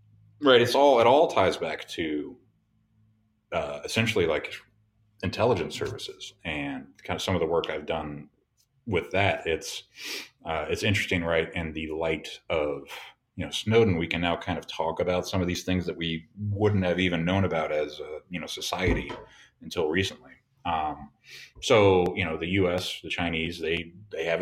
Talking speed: 180 wpm